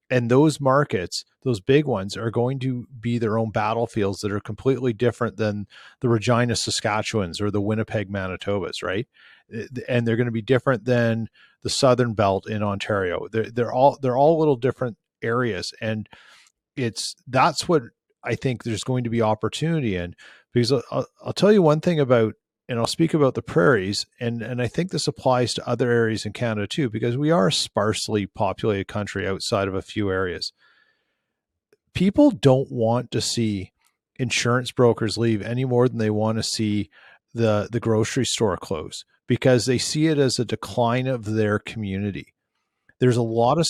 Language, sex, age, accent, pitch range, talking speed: English, male, 40-59, American, 110-130 Hz, 180 wpm